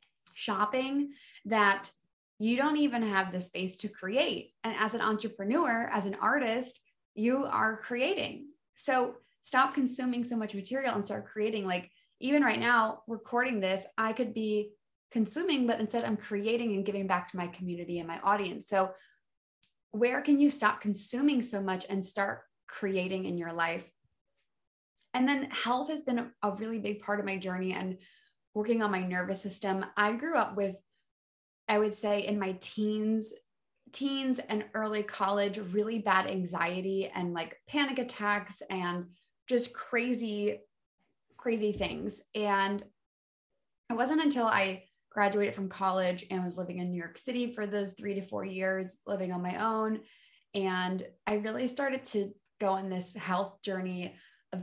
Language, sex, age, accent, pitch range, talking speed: English, female, 20-39, American, 190-235 Hz, 160 wpm